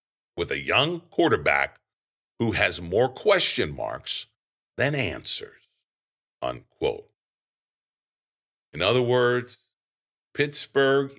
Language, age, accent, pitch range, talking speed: English, 50-69, American, 110-160 Hz, 85 wpm